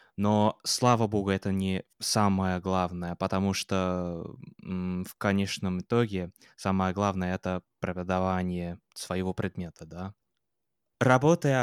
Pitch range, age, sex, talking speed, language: 95-115 Hz, 20-39, male, 105 wpm, Russian